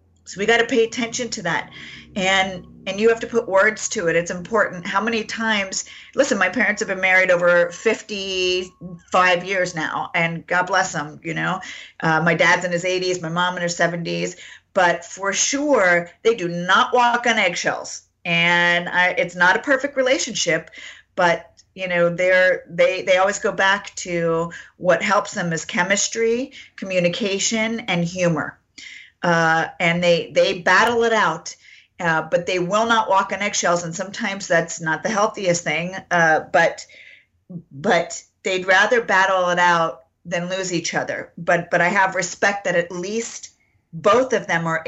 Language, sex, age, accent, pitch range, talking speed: English, female, 40-59, American, 170-210 Hz, 170 wpm